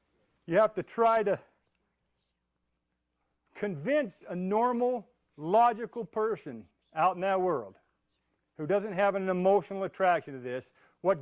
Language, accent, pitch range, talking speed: English, American, 150-210 Hz, 125 wpm